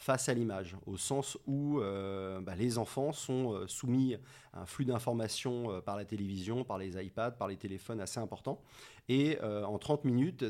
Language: French